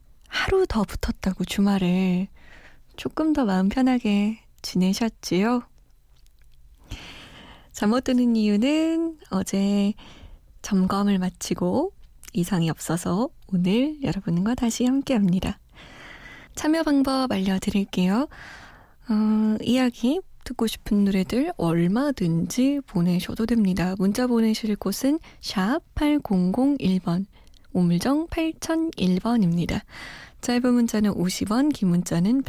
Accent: native